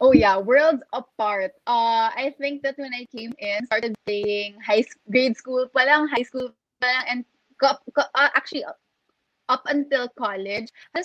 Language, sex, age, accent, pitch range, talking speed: English, female, 20-39, Filipino, 220-270 Hz, 150 wpm